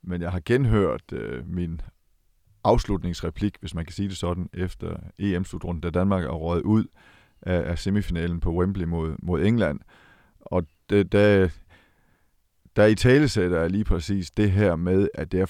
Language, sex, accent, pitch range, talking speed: Danish, male, native, 85-105 Hz, 165 wpm